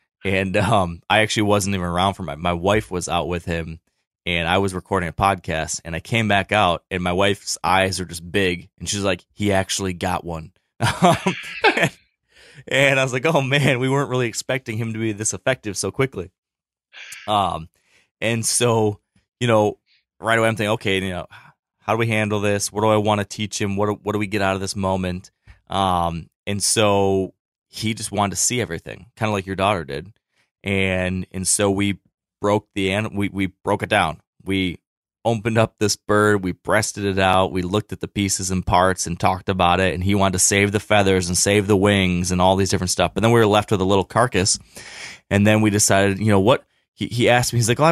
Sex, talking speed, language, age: male, 220 wpm, English, 20-39